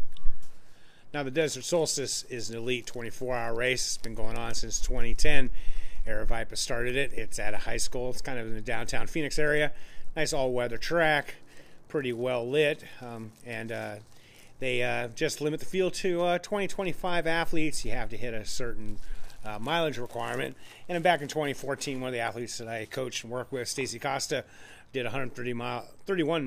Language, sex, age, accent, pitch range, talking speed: English, male, 40-59, American, 115-145 Hz, 180 wpm